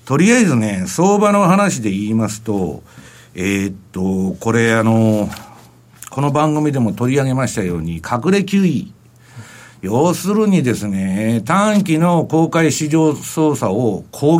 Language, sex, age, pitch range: Japanese, male, 60-79, 110-185 Hz